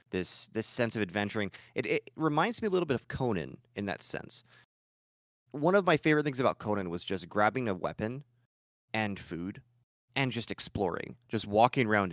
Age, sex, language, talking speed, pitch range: 30-49, male, English, 185 wpm, 100-125 Hz